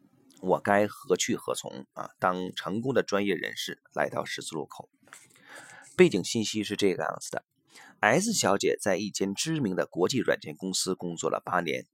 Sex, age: male, 30-49